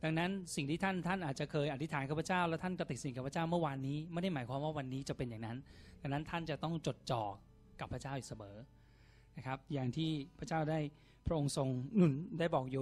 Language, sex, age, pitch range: Thai, male, 20-39, 120-150 Hz